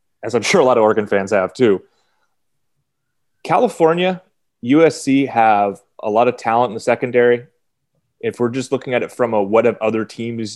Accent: American